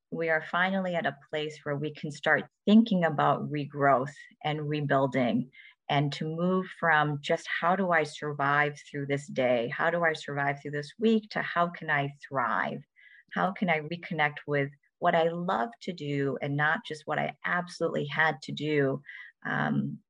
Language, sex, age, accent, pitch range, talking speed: English, female, 40-59, American, 150-185 Hz, 175 wpm